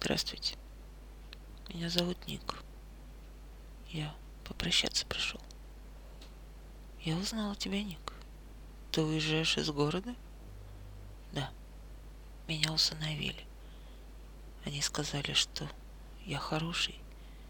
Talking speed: 80 wpm